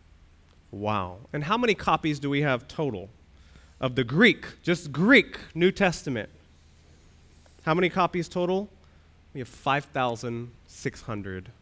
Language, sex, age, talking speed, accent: English, male, 30-49, 120 wpm, American